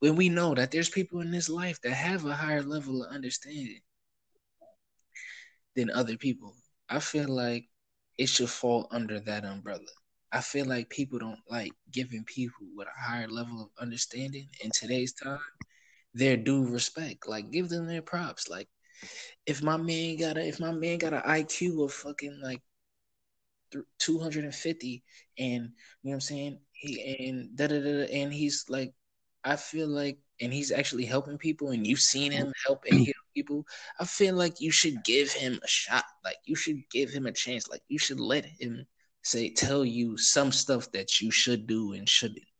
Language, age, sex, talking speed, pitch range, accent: English, 20-39, male, 190 wpm, 120-155 Hz, American